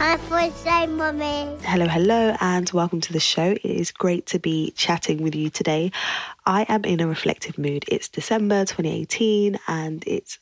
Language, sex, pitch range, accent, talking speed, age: English, female, 155-180 Hz, British, 155 wpm, 20-39